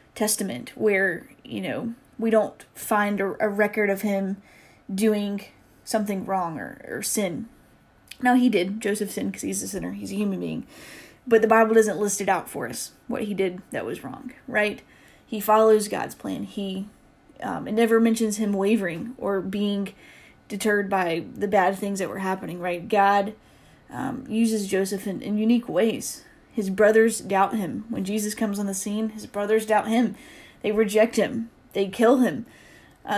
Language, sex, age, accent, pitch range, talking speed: English, female, 10-29, American, 195-225 Hz, 175 wpm